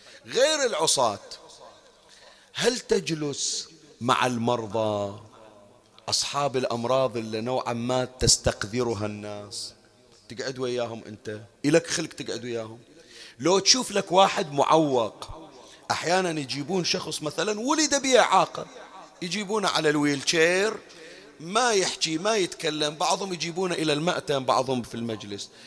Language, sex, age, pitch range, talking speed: Arabic, male, 40-59, 120-185 Hz, 105 wpm